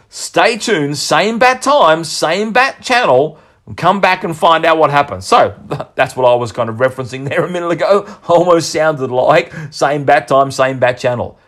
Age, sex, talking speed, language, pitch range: 40-59, male, 195 wpm, English, 125-195 Hz